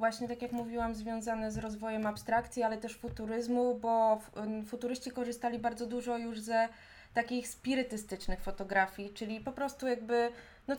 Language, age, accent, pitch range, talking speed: Polish, 20-39, native, 215-245 Hz, 145 wpm